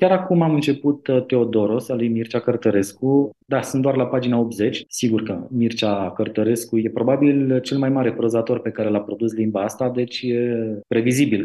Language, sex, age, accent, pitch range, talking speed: Romanian, male, 30-49, native, 110-150 Hz, 180 wpm